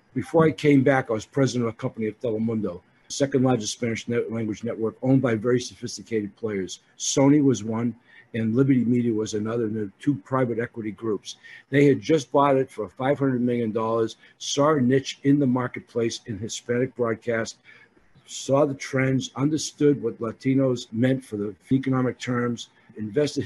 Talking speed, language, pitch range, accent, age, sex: 165 wpm, English, 110-130 Hz, American, 60-79, male